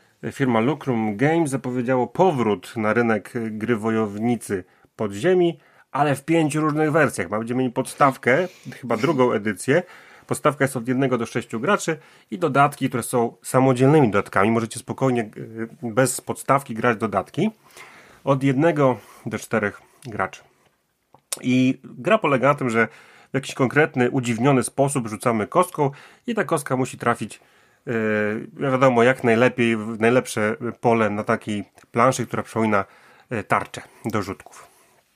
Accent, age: native, 30-49